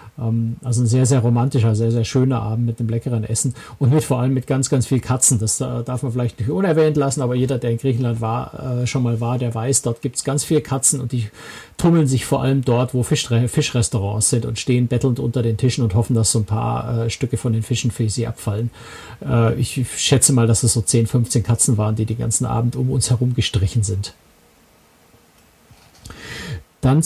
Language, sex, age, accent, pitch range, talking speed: German, male, 50-69, German, 120-145 Hz, 215 wpm